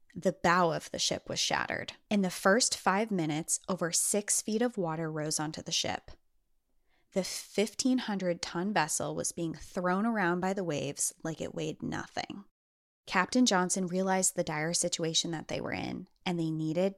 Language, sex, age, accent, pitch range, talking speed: English, female, 20-39, American, 160-195 Hz, 175 wpm